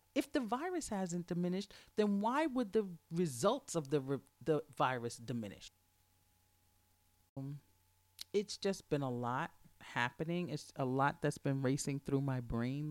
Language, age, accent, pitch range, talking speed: English, 40-59, American, 120-170 Hz, 150 wpm